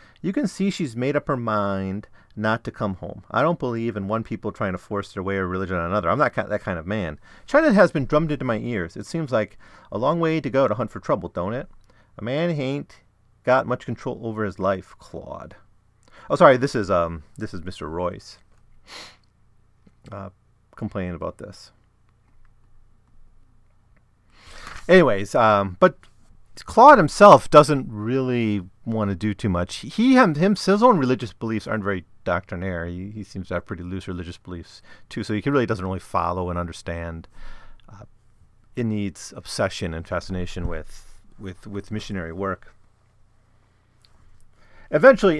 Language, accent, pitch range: English, American, 95-115 Hz